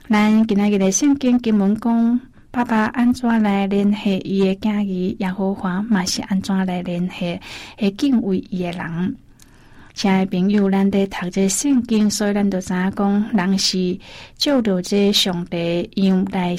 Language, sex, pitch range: Chinese, female, 185-220 Hz